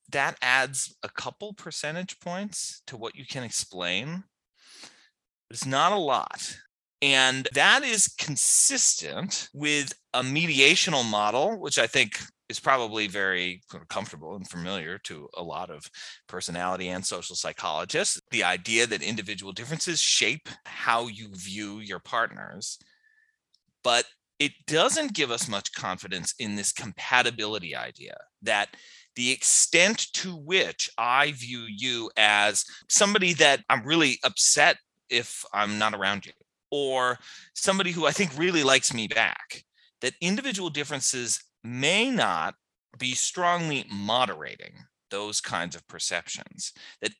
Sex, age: male, 30-49